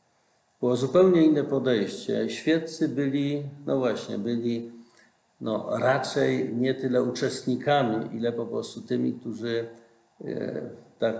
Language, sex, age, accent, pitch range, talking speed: Polish, male, 50-69, native, 115-145 Hz, 105 wpm